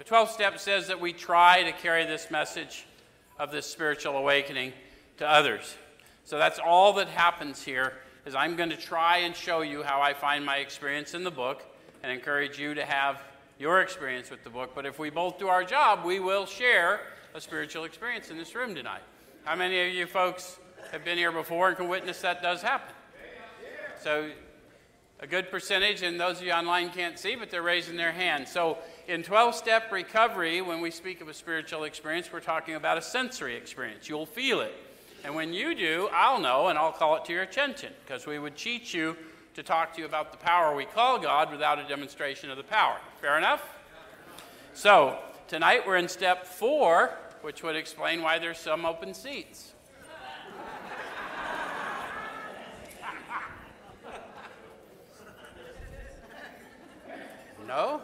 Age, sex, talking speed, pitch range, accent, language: 50-69, male, 175 wpm, 150-185 Hz, American, English